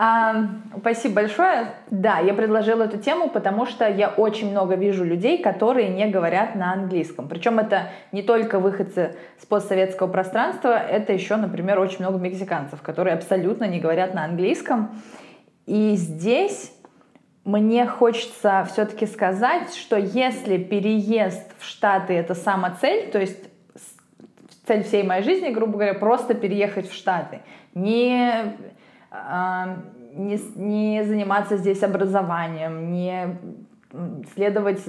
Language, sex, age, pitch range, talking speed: Russian, female, 20-39, 180-215 Hz, 125 wpm